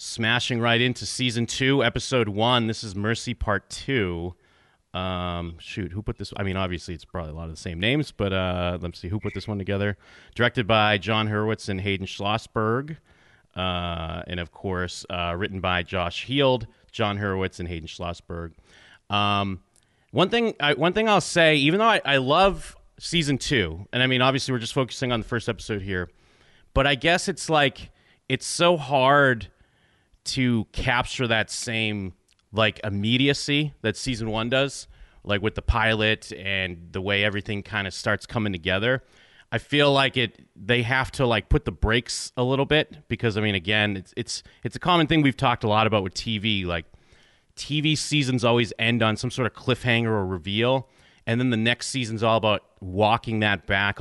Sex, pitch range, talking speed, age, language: male, 95-125 Hz, 190 wpm, 30-49, English